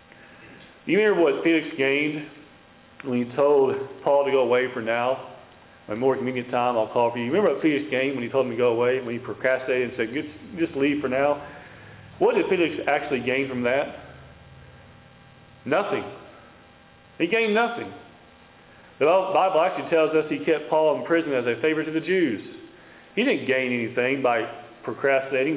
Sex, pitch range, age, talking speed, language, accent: male, 130-160 Hz, 40-59, 180 wpm, English, American